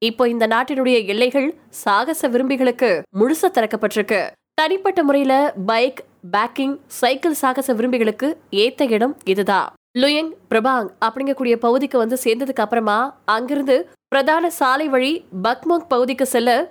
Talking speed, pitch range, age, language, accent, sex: 110 wpm, 230-285 Hz, 20-39, Tamil, native, female